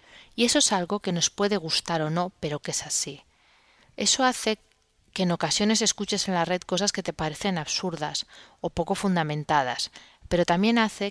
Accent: Spanish